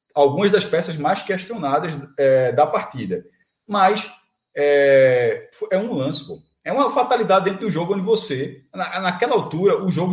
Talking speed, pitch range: 160 wpm, 140-205 Hz